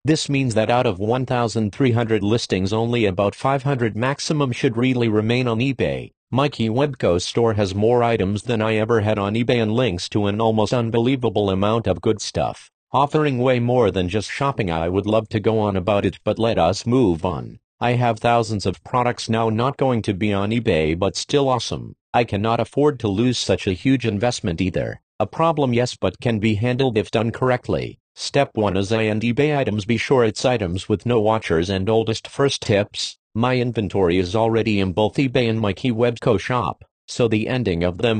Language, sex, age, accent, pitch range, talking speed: English, male, 50-69, American, 105-125 Hz, 200 wpm